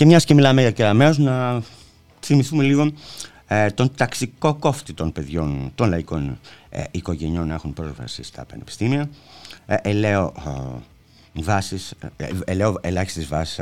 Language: Greek